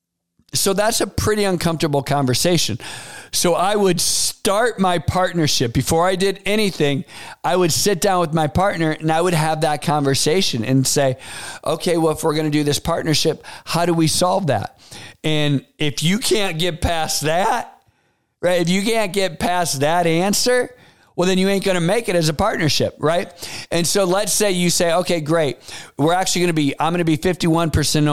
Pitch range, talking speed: 135-180 Hz, 190 wpm